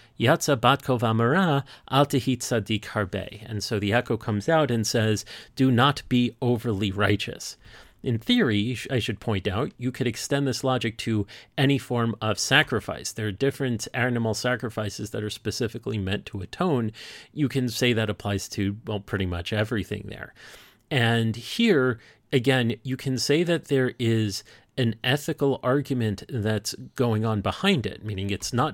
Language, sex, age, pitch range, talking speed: English, male, 40-59, 105-130 Hz, 150 wpm